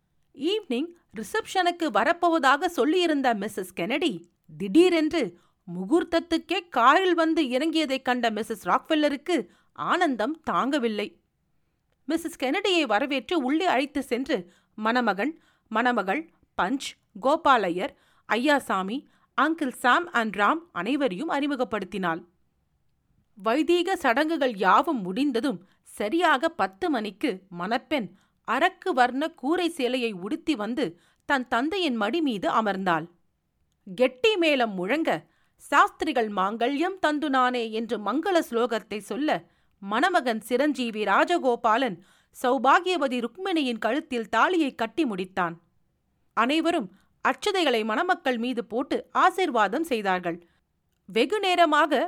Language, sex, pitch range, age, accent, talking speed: Tamil, female, 220-325 Hz, 50-69, native, 90 wpm